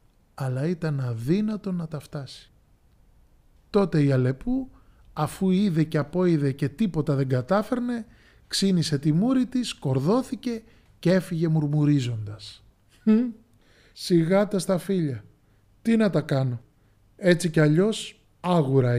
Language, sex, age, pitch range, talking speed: Greek, male, 20-39, 115-170 Hz, 115 wpm